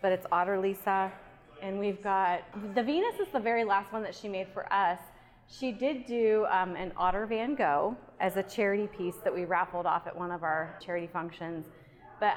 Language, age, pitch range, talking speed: English, 30-49, 180-225 Hz, 205 wpm